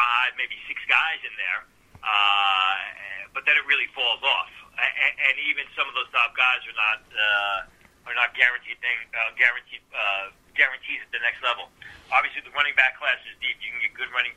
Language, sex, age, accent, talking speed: English, male, 40-59, American, 200 wpm